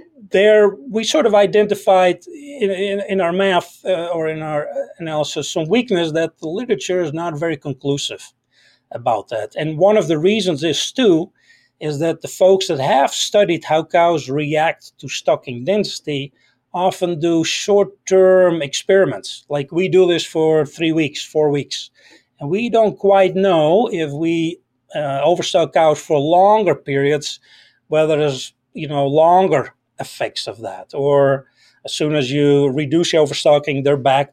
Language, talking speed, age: English, 155 wpm, 40-59